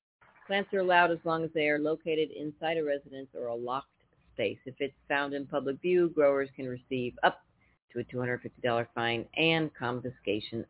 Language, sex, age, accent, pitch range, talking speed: English, female, 40-59, American, 125-160 Hz, 180 wpm